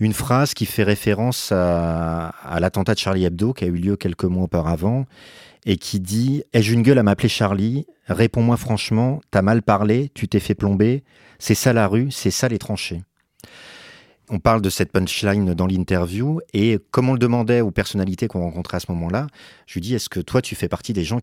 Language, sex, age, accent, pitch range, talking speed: French, male, 40-59, French, 95-120 Hz, 210 wpm